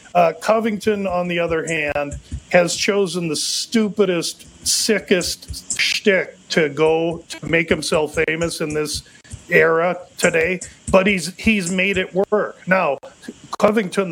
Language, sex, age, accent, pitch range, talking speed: English, male, 40-59, American, 160-195 Hz, 130 wpm